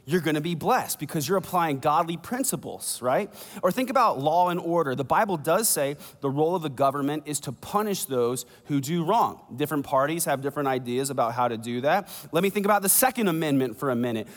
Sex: male